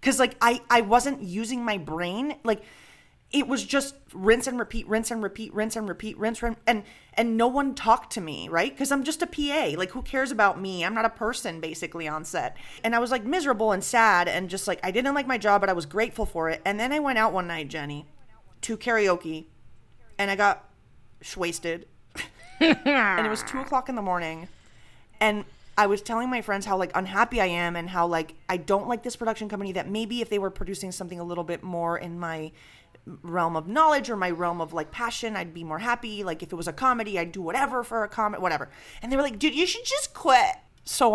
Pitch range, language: 180-255 Hz, English